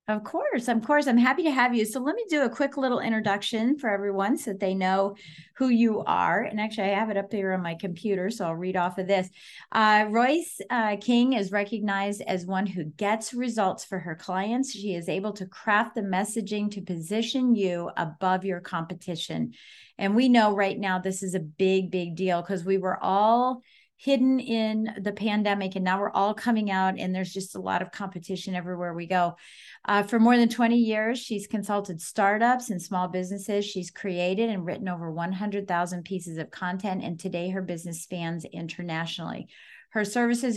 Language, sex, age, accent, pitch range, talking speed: English, female, 40-59, American, 185-230 Hz, 195 wpm